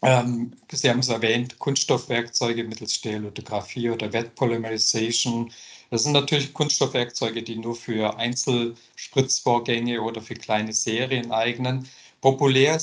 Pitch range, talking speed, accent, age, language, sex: 115-135 Hz, 110 wpm, German, 50-69, German, male